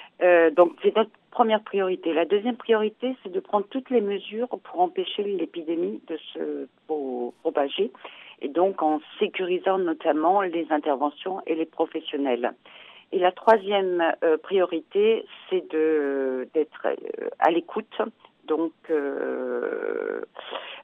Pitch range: 155-210 Hz